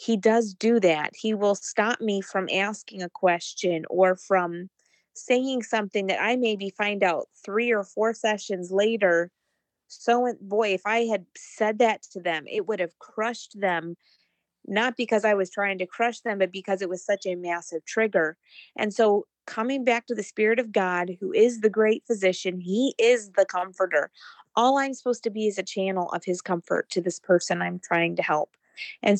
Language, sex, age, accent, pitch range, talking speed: English, female, 30-49, American, 185-225 Hz, 190 wpm